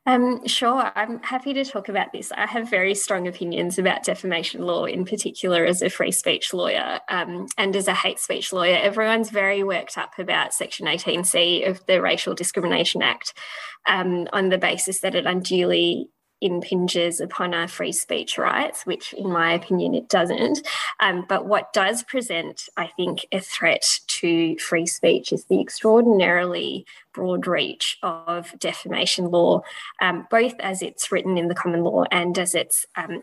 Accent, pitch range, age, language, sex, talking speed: Australian, 180-205 Hz, 10-29, English, female, 170 wpm